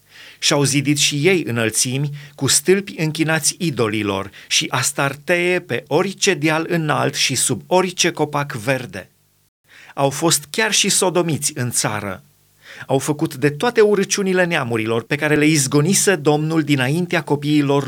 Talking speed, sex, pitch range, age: 135 wpm, male, 135-160 Hz, 30-49